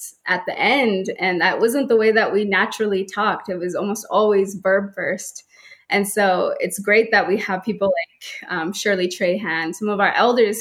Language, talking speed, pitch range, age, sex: English, 190 wpm, 185-215 Hz, 20-39, female